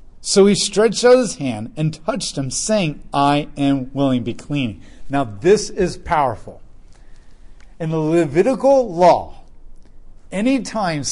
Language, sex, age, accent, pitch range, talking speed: English, male, 40-59, American, 120-170 Hz, 135 wpm